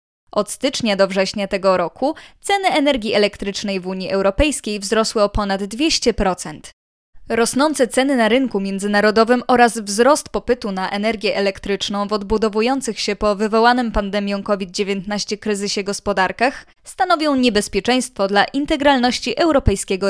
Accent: native